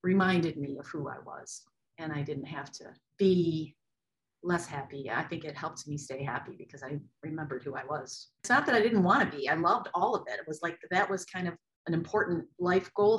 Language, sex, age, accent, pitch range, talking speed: English, female, 40-59, American, 145-180 Hz, 230 wpm